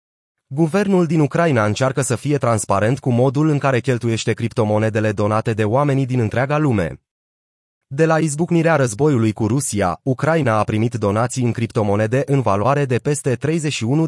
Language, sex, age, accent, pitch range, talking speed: Romanian, male, 30-49, native, 110-145 Hz, 155 wpm